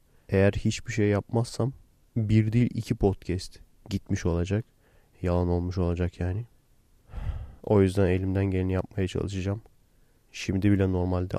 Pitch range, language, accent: 90-105 Hz, Turkish, native